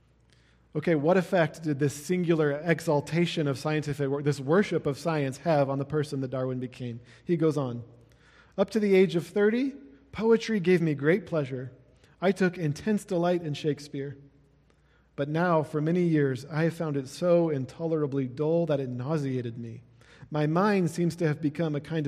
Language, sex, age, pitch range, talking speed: English, male, 40-59, 130-160 Hz, 175 wpm